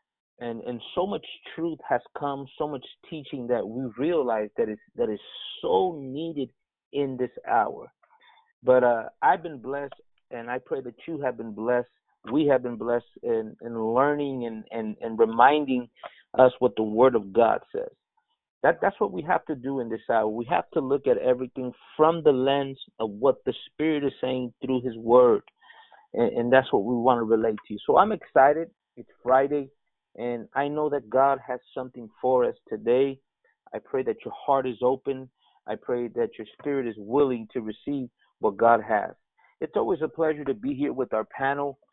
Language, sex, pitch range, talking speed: English, male, 120-145 Hz, 190 wpm